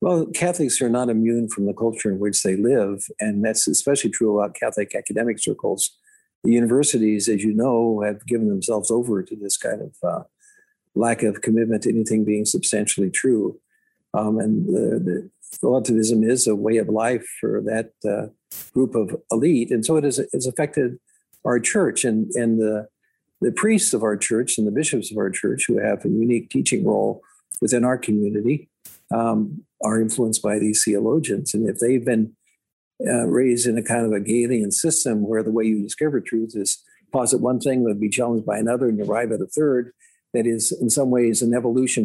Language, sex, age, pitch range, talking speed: English, male, 50-69, 110-135 Hz, 195 wpm